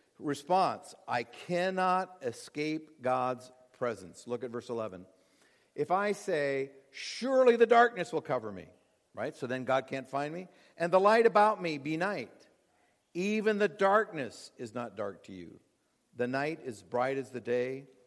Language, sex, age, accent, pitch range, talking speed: English, male, 50-69, American, 125-175 Hz, 160 wpm